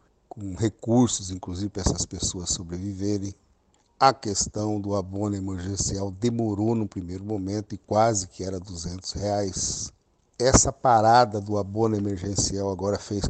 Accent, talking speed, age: Brazilian, 130 wpm, 60-79